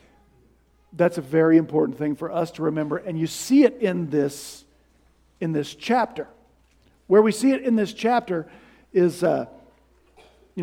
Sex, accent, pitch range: male, American, 165-230 Hz